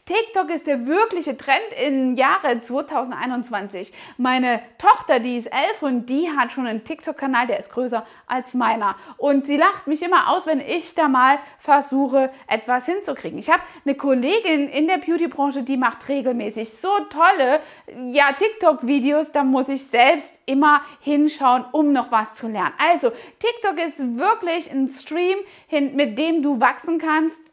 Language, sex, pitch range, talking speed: German, female, 250-320 Hz, 155 wpm